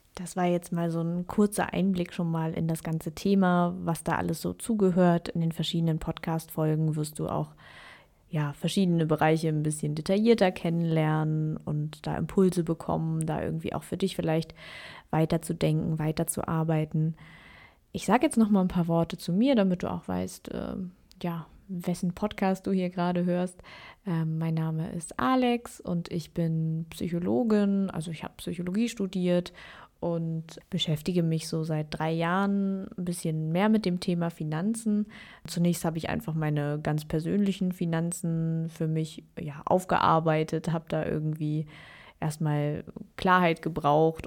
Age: 20-39